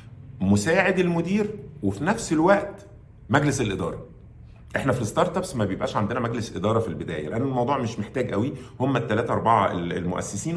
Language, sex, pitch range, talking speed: Arabic, male, 100-145 Hz, 155 wpm